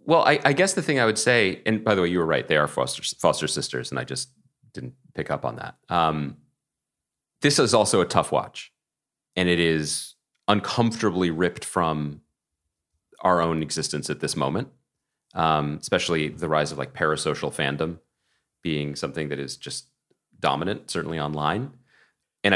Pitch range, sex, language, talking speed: 70-95 Hz, male, English, 175 wpm